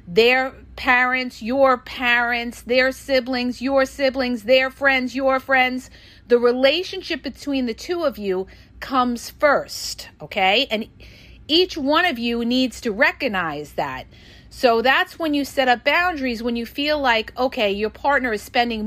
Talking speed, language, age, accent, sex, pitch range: 150 wpm, English, 40-59, American, female, 230-275 Hz